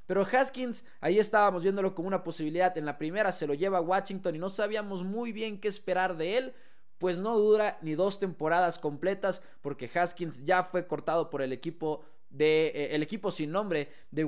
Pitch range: 165-205 Hz